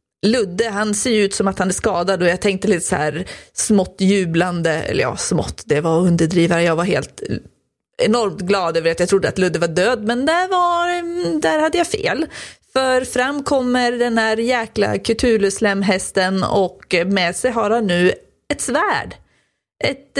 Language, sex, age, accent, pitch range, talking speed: Swedish, female, 30-49, native, 180-230 Hz, 175 wpm